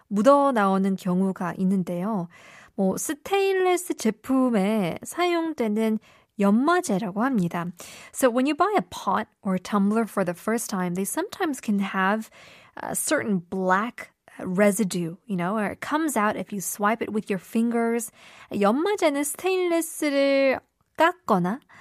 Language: Korean